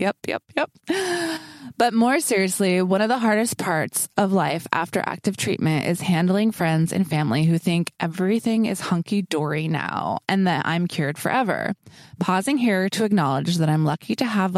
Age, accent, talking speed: 20-39, American, 170 wpm